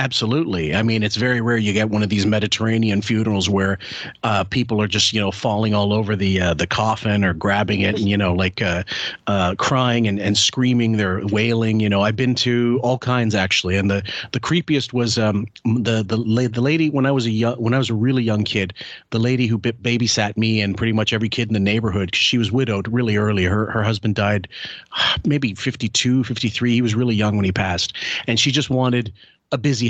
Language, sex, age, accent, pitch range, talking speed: English, male, 40-59, American, 105-125 Hz, 225 wpm